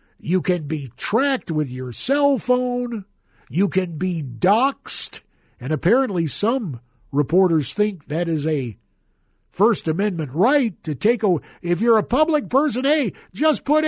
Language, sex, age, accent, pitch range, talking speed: English, male, 50-69, American, 160-240 Hz, 145 wpm